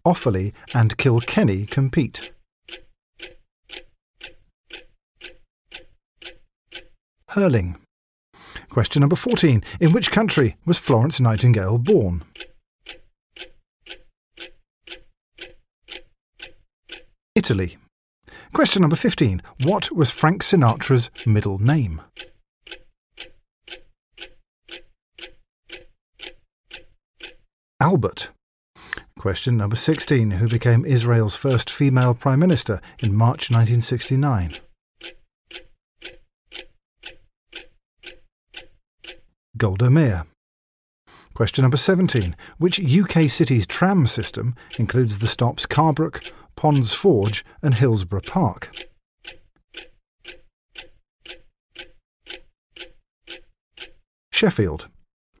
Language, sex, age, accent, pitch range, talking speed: English, male, 50-69, British, 110-155 Hz, 65 wpm